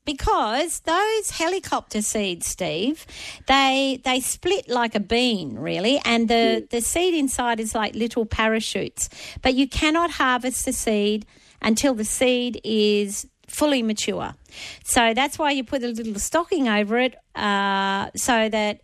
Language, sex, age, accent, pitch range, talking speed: English, female, 40-59, Australian, 210-265 Hz, 145 wpm